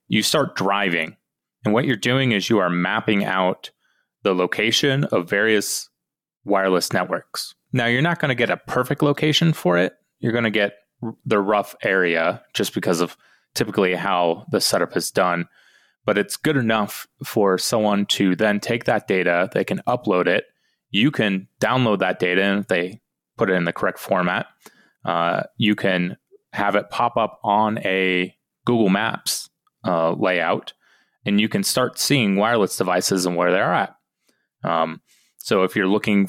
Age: 30-49